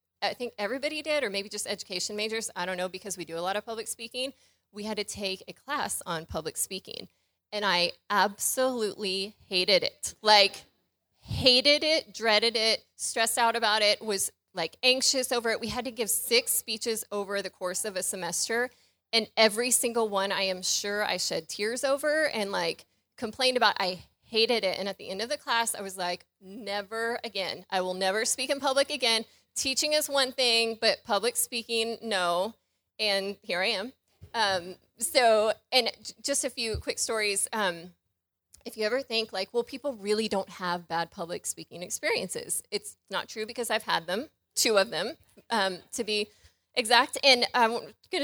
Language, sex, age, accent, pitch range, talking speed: English, female, 30-49, American, 195-245 Hz, 185 wpm